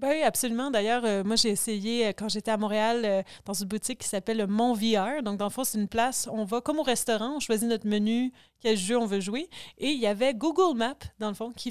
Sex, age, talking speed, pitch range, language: female, 30-49, 270 wpm, 210-250 Hz, French